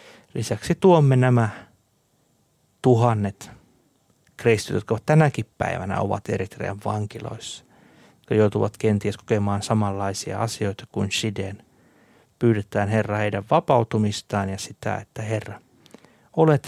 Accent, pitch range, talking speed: native, 105-135 Hz, 105 wpm